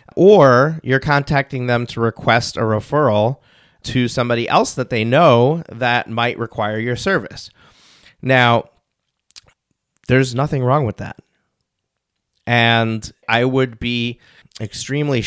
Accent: American